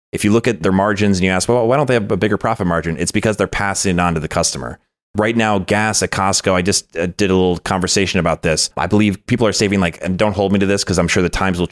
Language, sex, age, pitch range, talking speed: English, male, 30-49, 90-110 Hz, 295 wpm